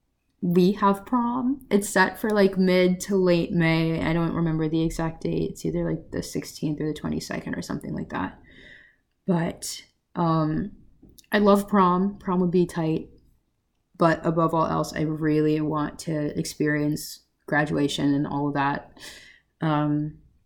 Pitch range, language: 150-180 Hz, English